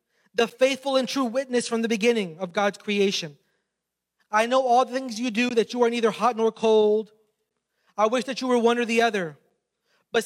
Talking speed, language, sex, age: 205 wpm, English, male, 30-49